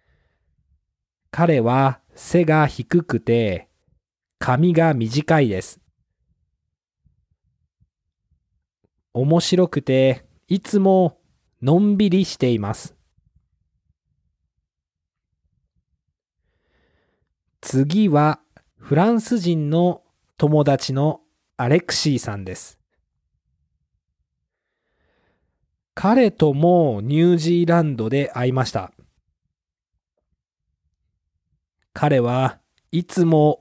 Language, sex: Japanese, male